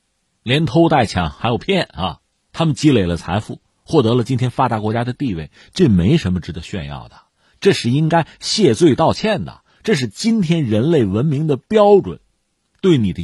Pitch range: 105-145 Hz